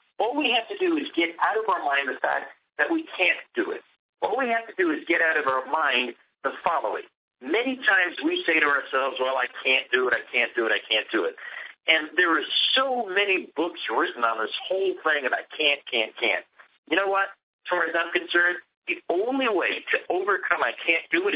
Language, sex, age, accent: English, male, 50-69, American